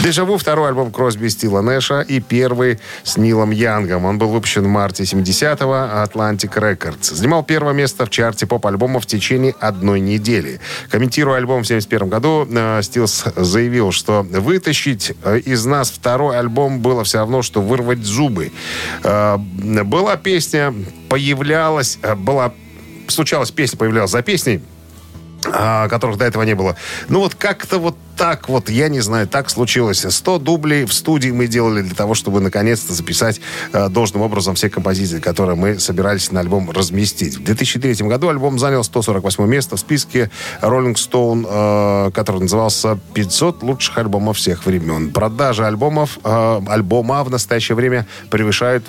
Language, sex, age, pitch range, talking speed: Russian, male, 40-59, 100-130 Hz, 145 wpm